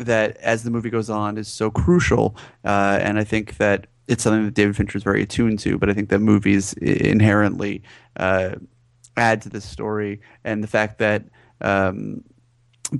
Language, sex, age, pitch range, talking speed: English, male, 30-49, 105-120 Hz, 180 wpm